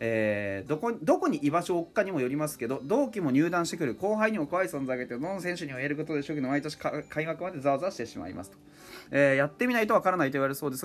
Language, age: Japanese, 30-49